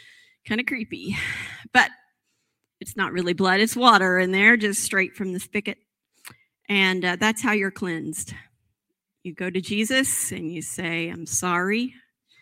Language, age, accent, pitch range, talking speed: English, 40-59, American, 190-260 Hz, 155 wpm